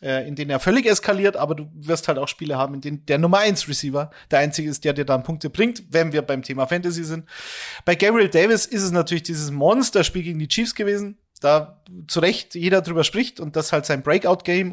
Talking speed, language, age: 225 wpm, German, 30-49